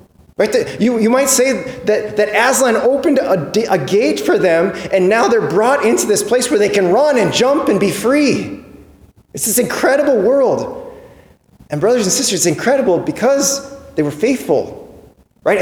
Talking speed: 170 wpm